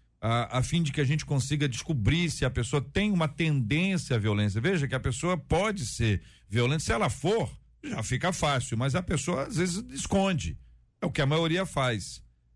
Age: 50-69